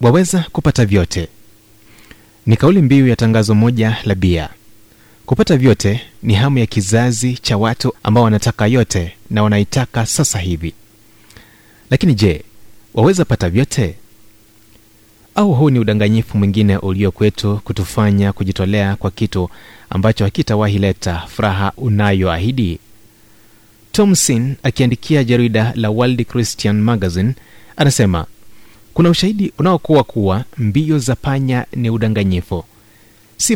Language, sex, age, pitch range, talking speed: Swahili, male, 30-49, 105-130 Hz, 115 wpm